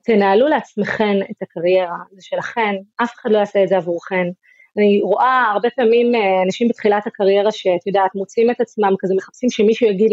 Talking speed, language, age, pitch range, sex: 165 wpm, Hebrew, 30-49, 195-235 Hz, female